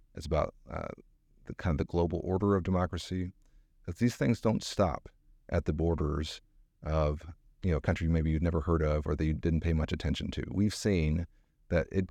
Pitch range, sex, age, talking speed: 80-100 Hz, male, 40-59, 205 wpm